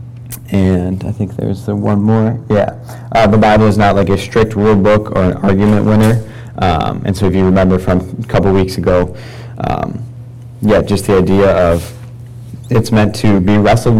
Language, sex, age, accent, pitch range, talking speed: English, male, 30-49, American, 95-115 Hz, 185 wpm